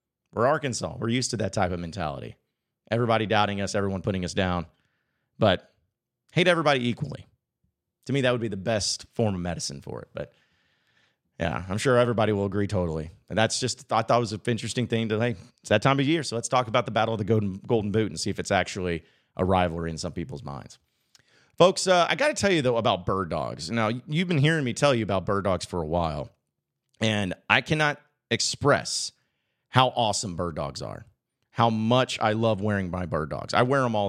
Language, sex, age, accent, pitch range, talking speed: English, male, 30-49, American, 100-135 Hz, 215 wpm